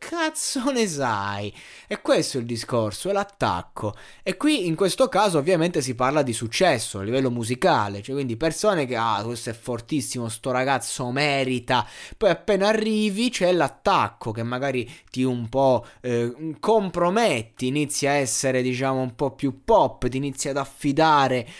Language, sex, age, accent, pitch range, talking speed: Italian, male, 20-39, native, 125-160 Hz, 160 wpm